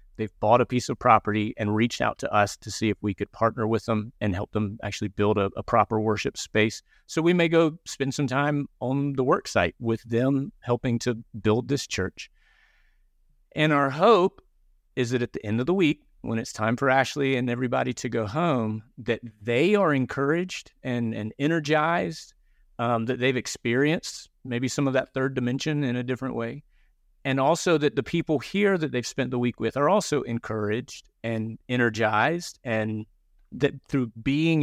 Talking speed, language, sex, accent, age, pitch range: 190 wpm, English, male, American, 40-59, 110-140 Hz